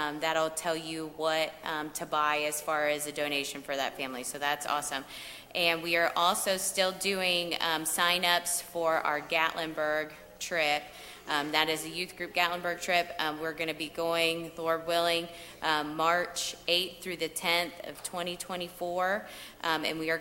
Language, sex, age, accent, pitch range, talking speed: English, female, 20-39, American, 155-175 Hz, 175 wpm